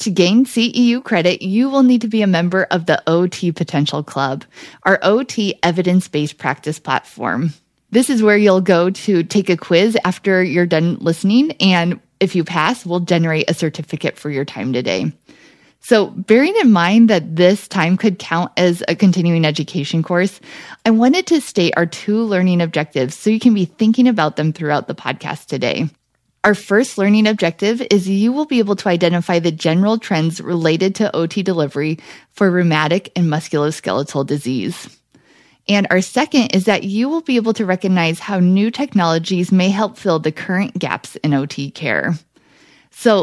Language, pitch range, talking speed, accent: English, 160-210 Hz, 175 wpm, American